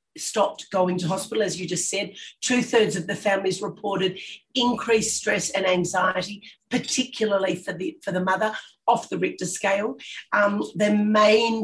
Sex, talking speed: female, 160 wpm